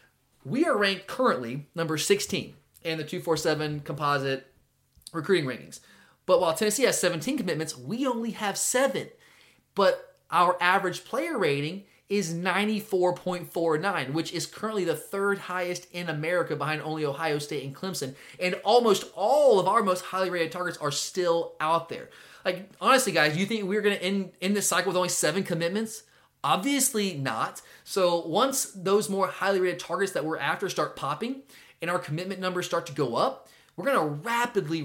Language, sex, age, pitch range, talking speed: English, male, 30-49, 155-200 Hz, 170 wpm